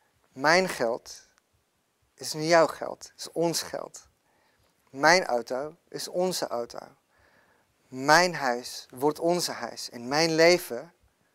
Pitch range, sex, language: 130-155 Hz, male, Dutch